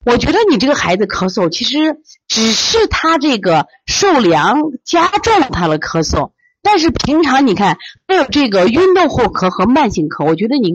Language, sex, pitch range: Chinese, female, 175-290 Hz